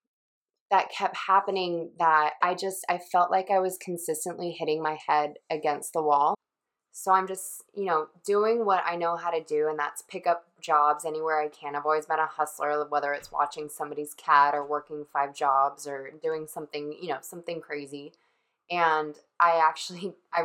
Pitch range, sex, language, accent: 150-170 Hz, female, English, American